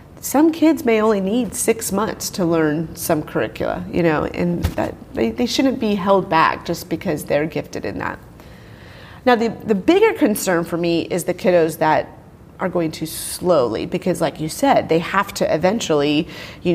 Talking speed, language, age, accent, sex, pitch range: 185 wpm, English, 30-49, American, female, 160-195 Hz